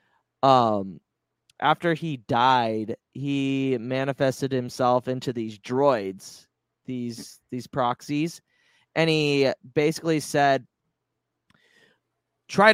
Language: English